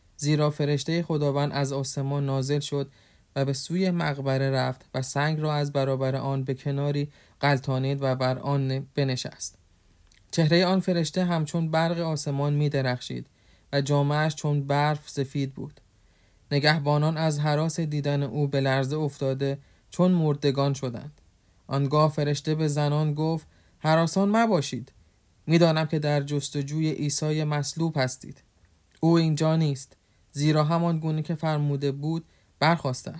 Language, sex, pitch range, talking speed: Persian, male, 140-160 Hz, 135 wpm